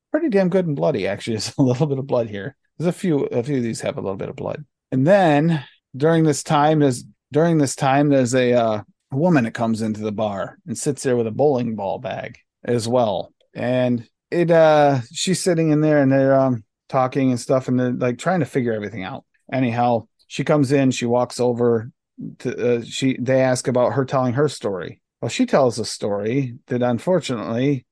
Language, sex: English, male